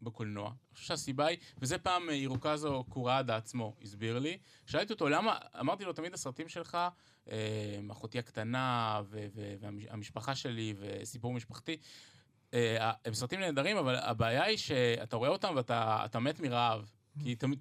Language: Hebrew